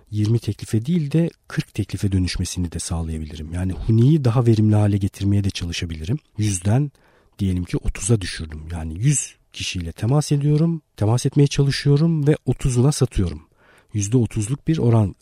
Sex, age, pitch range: male, 50-69, 100-140 Hz